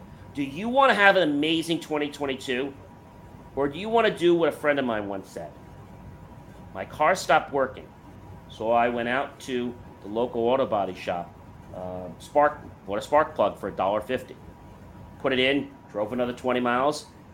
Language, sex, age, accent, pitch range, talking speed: English, male, 40-59, American, 110-175 Hz, 170 wpm